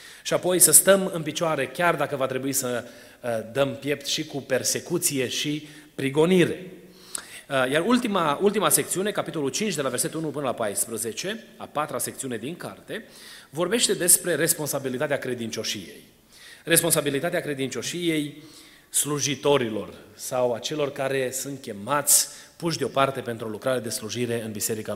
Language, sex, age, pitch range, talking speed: Romanian, male, 30-49, 130-165 Hz, 135 wpm